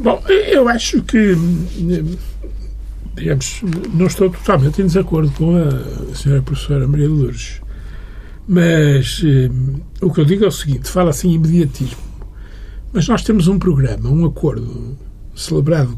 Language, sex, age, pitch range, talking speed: Portuguese, male, 60-79, 135-200 Hz, 135 wpm